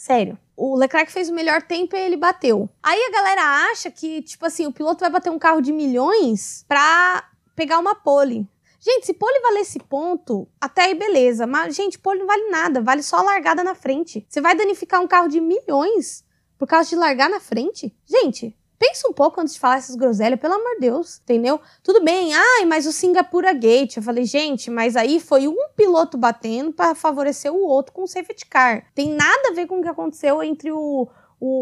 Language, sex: Portuguese, female